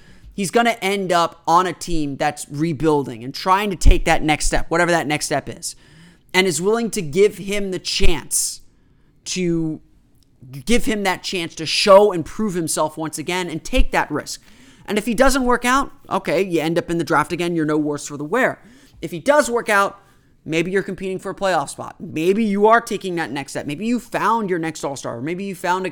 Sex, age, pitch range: male, 30-49, 155-190 Hz